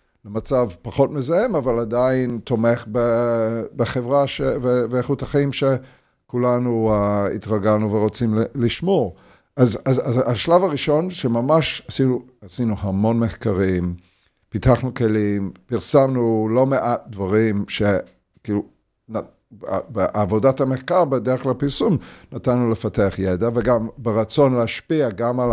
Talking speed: 105 wpm